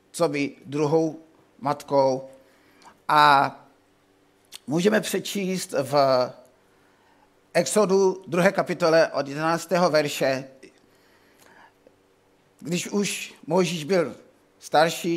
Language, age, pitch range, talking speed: Czech, 50-69, 150-205 Hz, 75 wpm